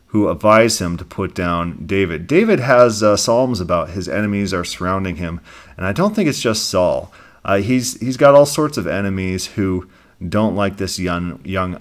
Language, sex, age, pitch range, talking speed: English, male, 40-59, 90-115 Hz, 195 wpm